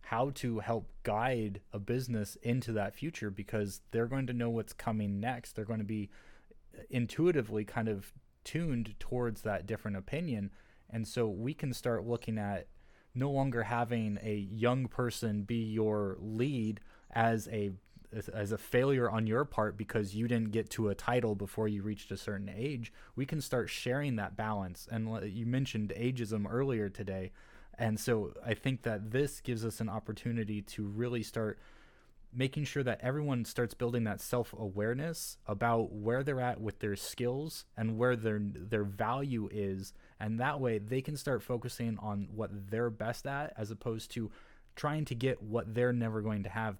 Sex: male